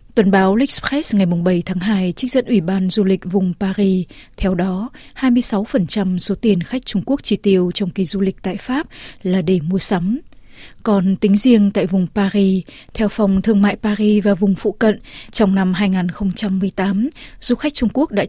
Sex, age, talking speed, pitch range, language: female, 20-39, 190 wpm, 190-220 Hz, Vietnamese